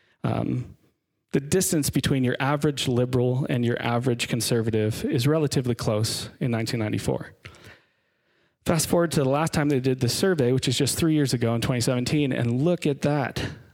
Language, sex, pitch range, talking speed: English, male, 120-145 Hz, 165 wpm